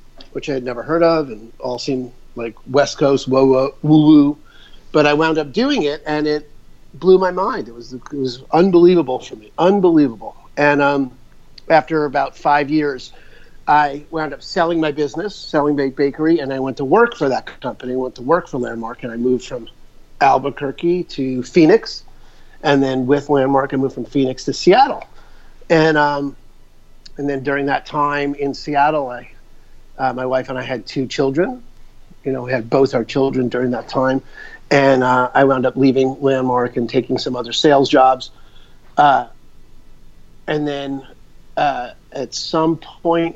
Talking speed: 180 wpm